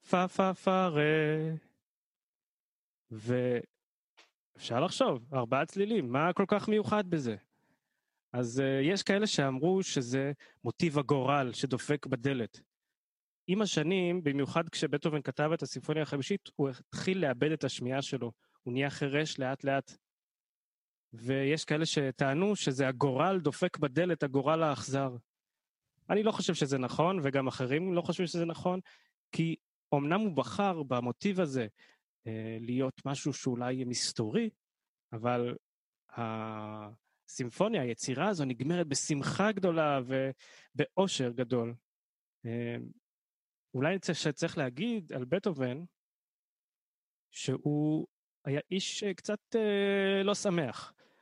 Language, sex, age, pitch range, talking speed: Hebrew, male, 20-39, 130-180 Hz, 110 wpm